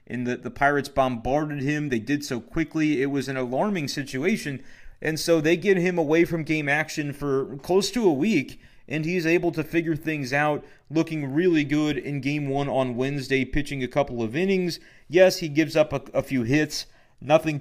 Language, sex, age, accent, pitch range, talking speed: English, male, 30-49, American, 130-155 Hz, 195 wpm